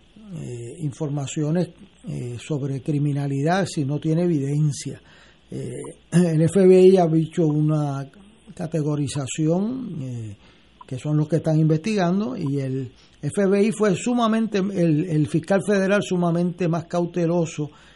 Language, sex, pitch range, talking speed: Spanish, male, 150-190 Hz, 115 wpm